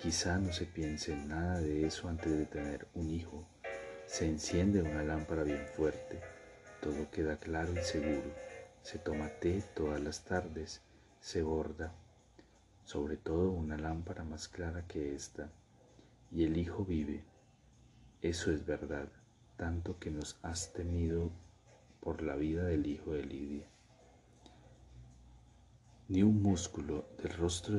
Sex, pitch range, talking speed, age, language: male, 75-90 Hz, 140 wpm, 40-59, Spanish